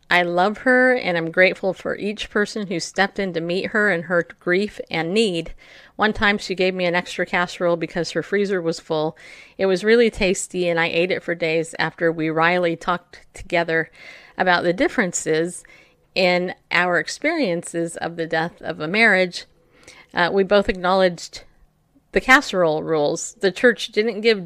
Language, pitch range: English, 170-205 Hz